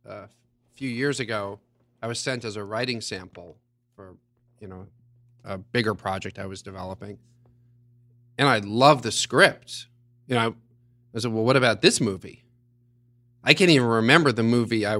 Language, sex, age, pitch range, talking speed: English, male, 40-59, 110-125 Hz, 170 wpm